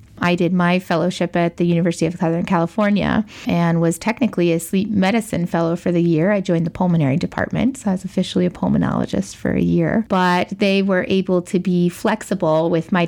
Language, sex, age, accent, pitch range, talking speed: English, female, 20-39, American, 160-185 Hz, 195 wpm